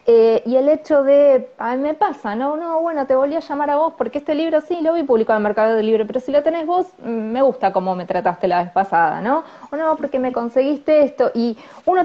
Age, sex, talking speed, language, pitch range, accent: 20-39, female, 255 wpm, Spanish, 195-280 Hz, Argentinian